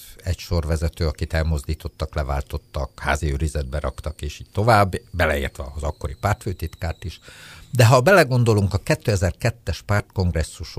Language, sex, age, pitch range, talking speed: Hungarian, male, 60-79, 75-105 Hz, 120 wpm